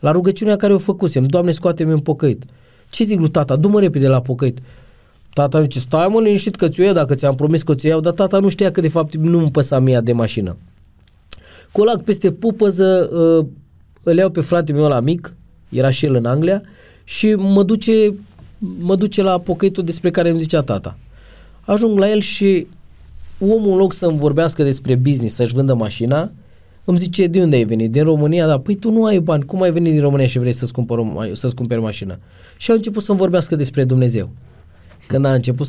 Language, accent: Romanian, native